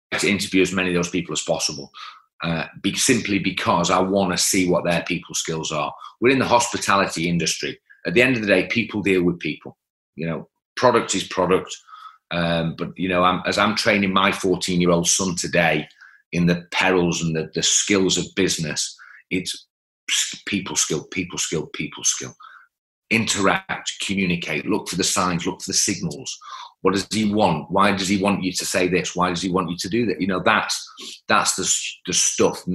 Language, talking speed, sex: English, 195 wpm, male